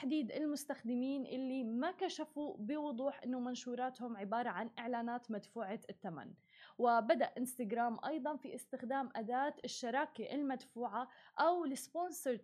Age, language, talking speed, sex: 20-39, Arabic, 110 wpm, female